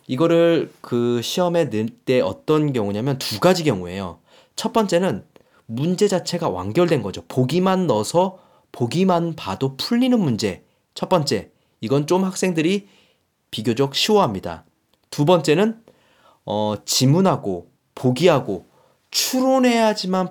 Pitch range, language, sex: 115-180 Hz, Korean, male